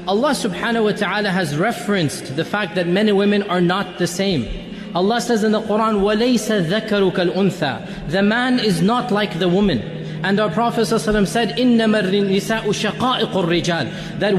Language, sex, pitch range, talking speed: English, male, 190-250 Hz, 150 wpm